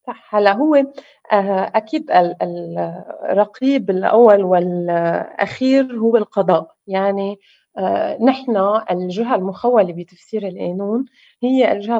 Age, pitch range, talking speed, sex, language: 20-39, 185-235 Hz, 75 wpm, female, Arabic